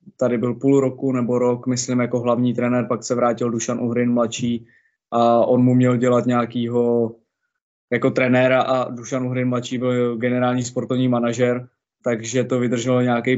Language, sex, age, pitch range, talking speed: Czech, male, 20-39, 120-130 Hz, 160 wpm